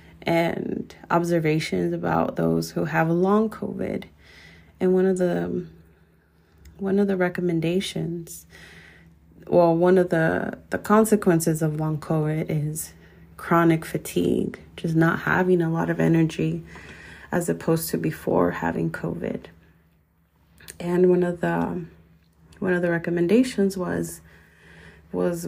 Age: 30-49